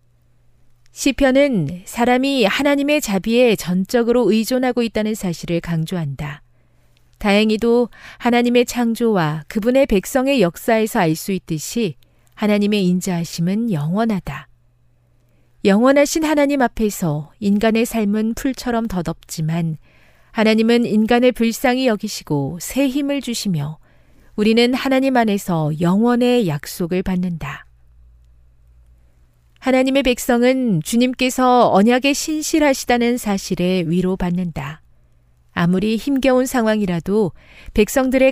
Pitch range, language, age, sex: 160-245 Hz, Korean, 40-59, female